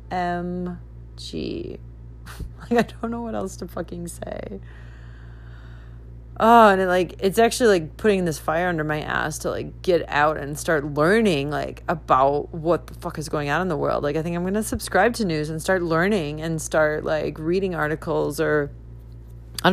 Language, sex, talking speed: English, female, 180 wpm